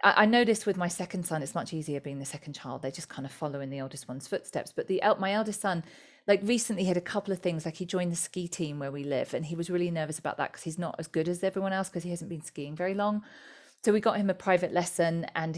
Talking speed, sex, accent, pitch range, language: 285 wpm, female, British, 160-200 Hz, English